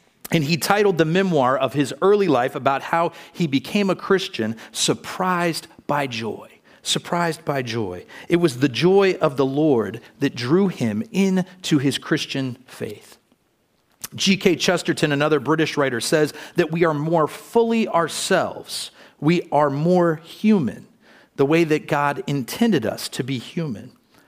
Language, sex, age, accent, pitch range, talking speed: English, male, 40-59, American, 130-175 Hz, 150 wpm